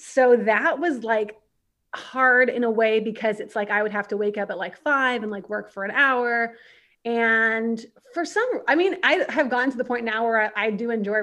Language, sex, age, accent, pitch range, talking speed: English, female, 30-49, American, 210-250 Hz, 230 wpm